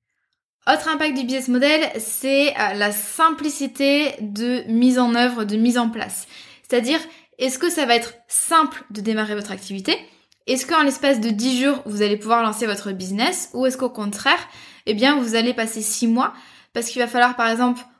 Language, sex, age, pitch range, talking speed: French, female, 10-29, 215-255 Hz, 185 wpm